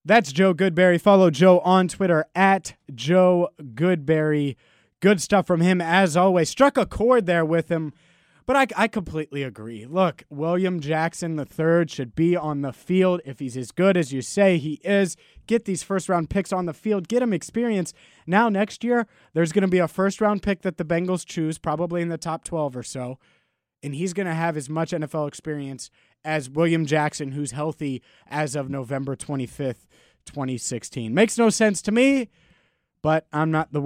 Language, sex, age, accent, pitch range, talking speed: English, male, 20-39, American, 150-195 Hz, 185 wpm